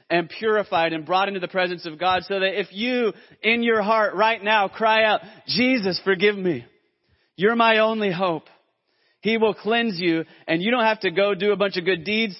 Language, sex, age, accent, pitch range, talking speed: English, male, 30-49, American, 155-195 Hz, 210 wpm